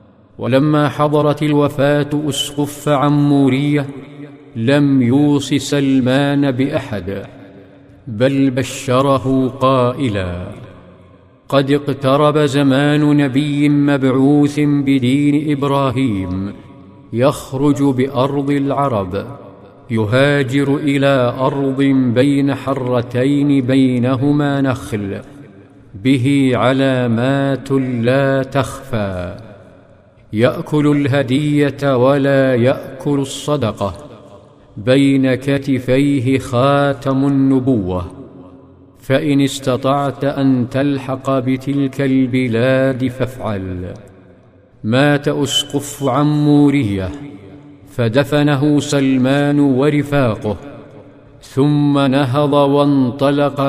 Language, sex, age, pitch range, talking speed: Arabic, male, 50-69, 125-140 Hz, 65 wpm